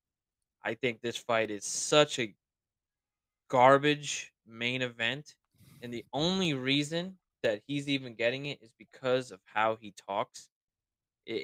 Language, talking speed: English, 135 wpm